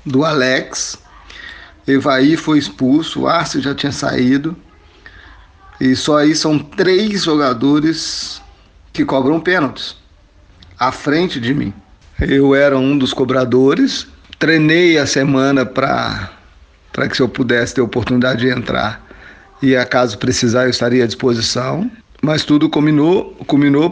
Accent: Brazilian